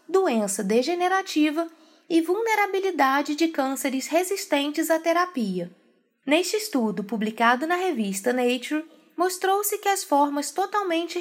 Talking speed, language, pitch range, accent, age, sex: 105 wpm, Portuguese, 235-365 Hz, Brazilian, 20-39, female